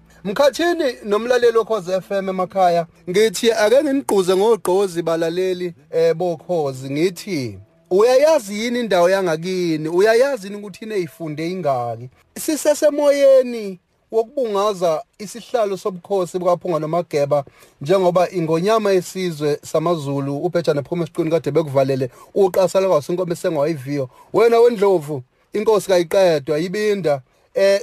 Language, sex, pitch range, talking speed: English, male, 175-225 Hz, 110 wpm